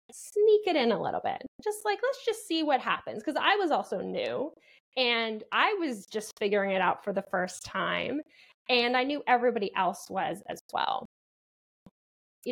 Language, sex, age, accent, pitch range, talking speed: English, female, 20-39, American, 195-270 Hz, 180 wpm